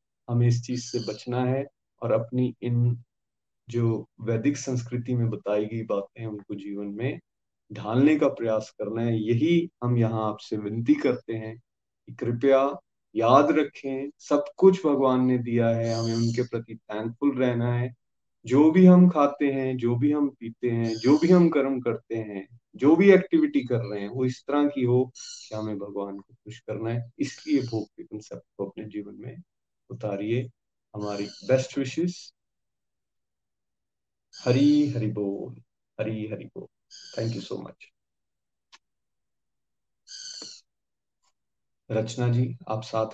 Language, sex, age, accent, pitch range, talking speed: Hindi, male, 30-49, native, 110-135 Hz, 145 wpm